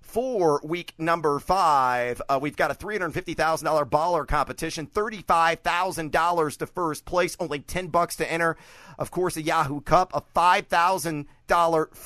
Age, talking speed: 40-59, 135 wpm